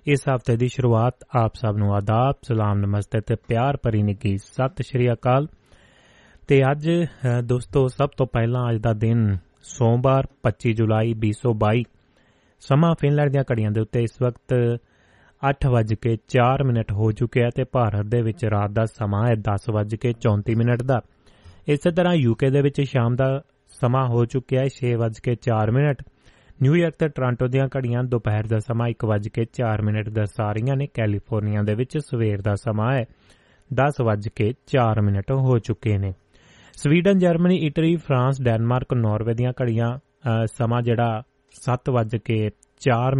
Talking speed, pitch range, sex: 140 wpm, 110-135 Hz, male